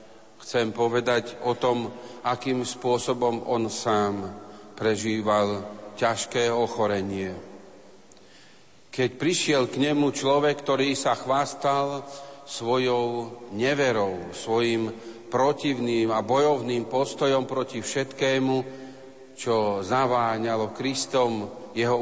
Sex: male